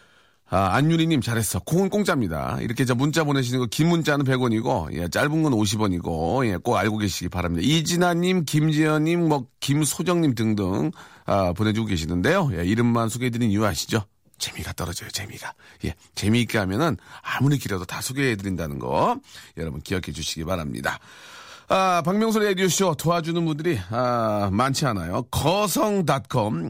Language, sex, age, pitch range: Korean, male, 40-59, 110-175 Hz